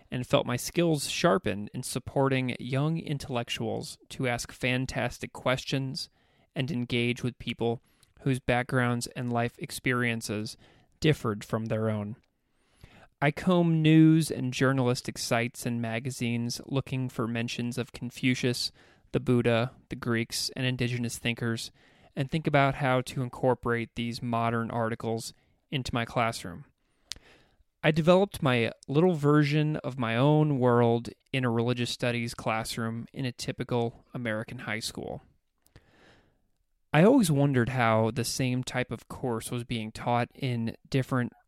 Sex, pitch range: male, 115-135 Hz